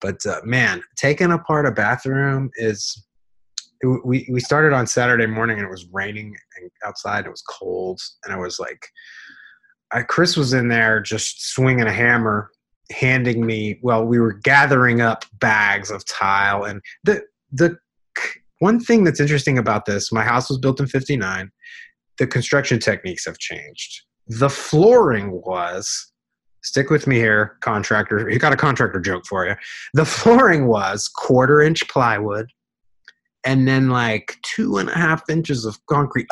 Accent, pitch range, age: American, 105-140 Hz, 30-49